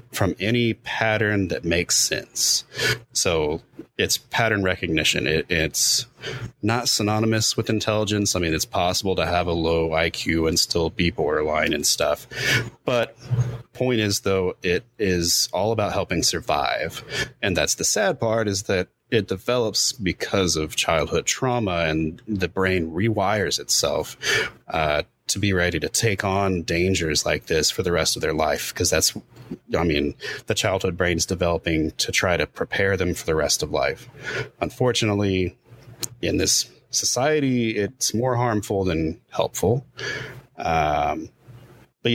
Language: English